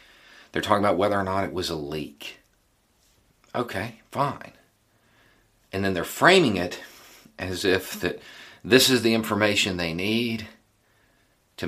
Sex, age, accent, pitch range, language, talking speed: male, 50-69, American, 85-110 Hz, English, 140 wpm